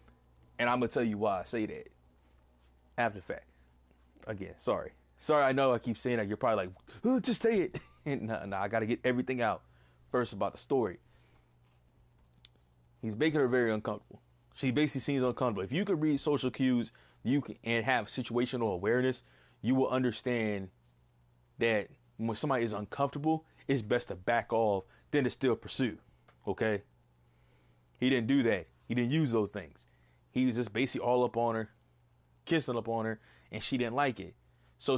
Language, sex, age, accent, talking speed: English, male, 20-39, American, 180 wpm